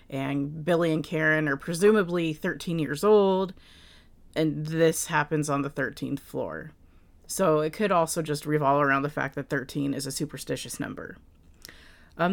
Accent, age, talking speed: American, 30-49, 155 wpm